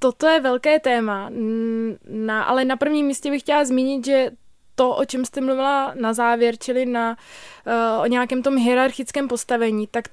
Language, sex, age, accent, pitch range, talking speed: Czech, female, 20-39, native, 245-275 Hz, 170 wpm